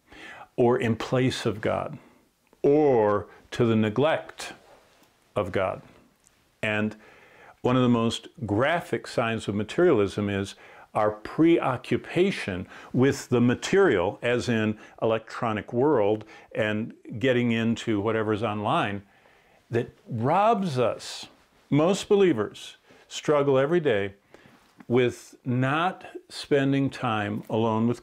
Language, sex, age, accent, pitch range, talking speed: English, male, 50-69, American, 110-145 Hz, 105 wpm